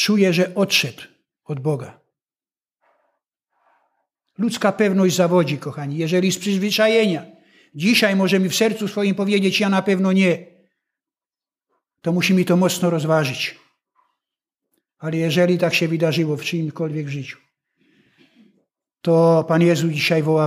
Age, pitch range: 60-79, 160-215 Hz